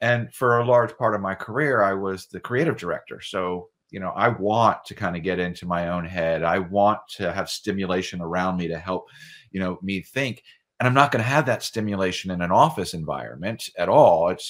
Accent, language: American, English